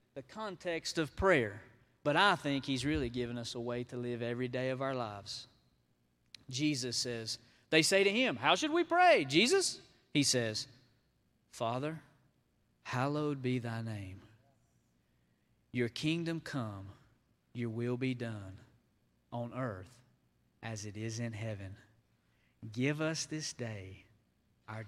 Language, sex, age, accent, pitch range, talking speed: English, male, 40-59, American, 110-135 Hz, 135 wpm